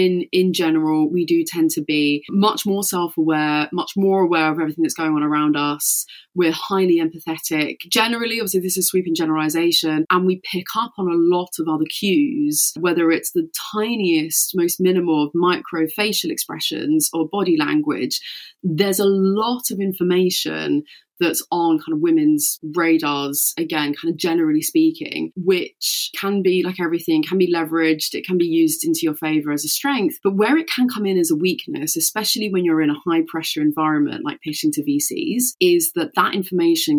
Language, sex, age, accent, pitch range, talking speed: English, female, 20-39, British, 160-250 Hz, 180 wpm